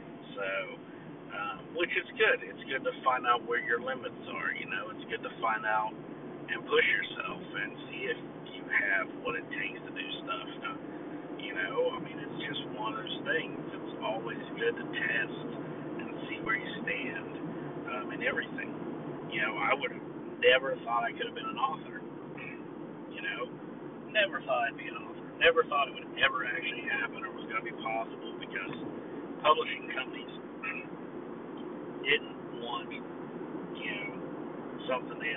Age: 50-69